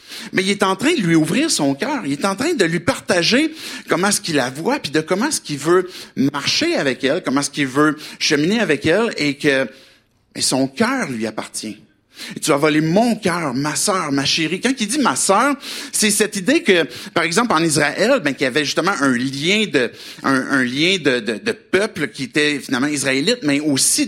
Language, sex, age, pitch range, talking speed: French, male, 50-69, 140-200 Hz, 230 wpm